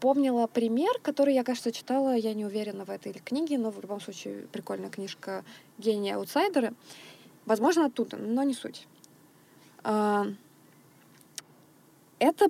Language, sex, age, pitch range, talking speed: Russian, female, 20-39, 220-280 Hz, 125 wpm